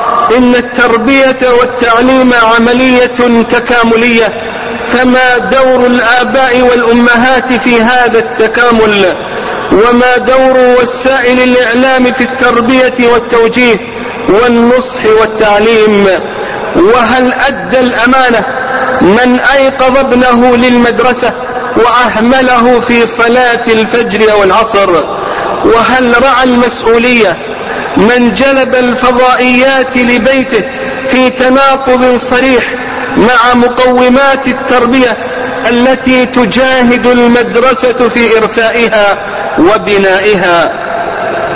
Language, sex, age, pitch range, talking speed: Arabic, male, 40-59, 235-255 Hz, 75 wpm